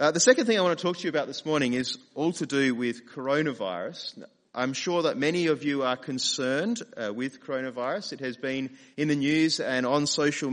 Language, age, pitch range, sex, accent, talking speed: English, 30-49, 115-150 Hz, male, Australian, 220 wpm